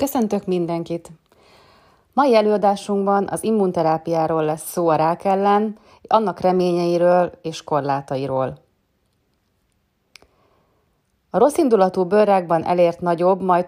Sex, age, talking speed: female, 30-49, 95 wpm